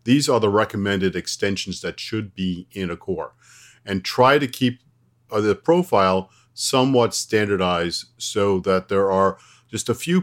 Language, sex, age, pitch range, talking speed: English, male, 50-69, 95-120 Hz, 160 wpm